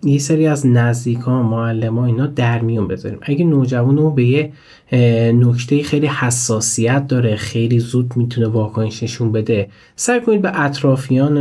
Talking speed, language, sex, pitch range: 145 wpm, Persian, male, 120-165 Hz